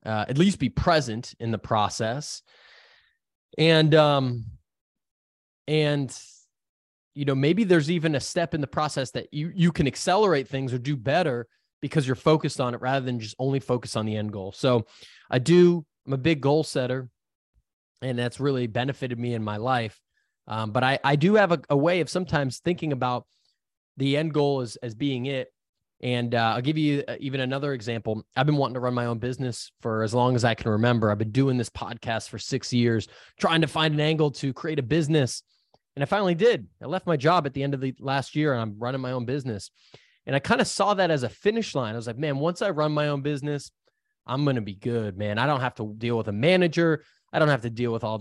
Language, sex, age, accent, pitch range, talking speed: English, male, 20-39, American, 120-155 Hz, 225 wpm